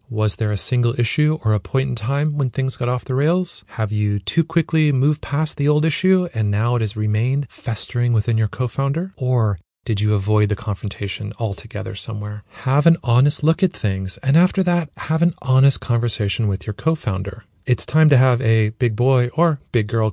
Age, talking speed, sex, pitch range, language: 30-49, 205 wpm, male, 110-145 Hz, English